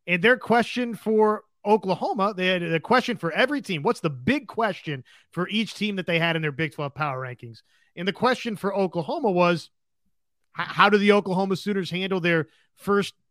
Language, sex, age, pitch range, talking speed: English, male, 30-49, 165-225 Hz, 190 wpm